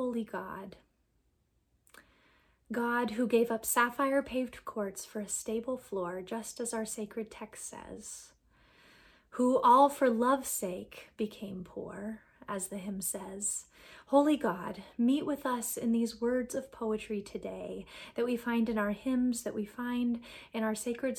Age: 30-49